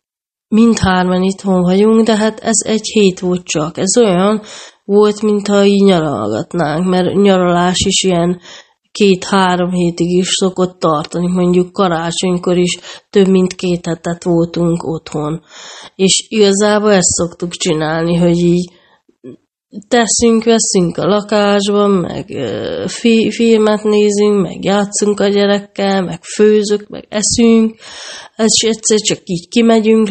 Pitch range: 175-210 Hz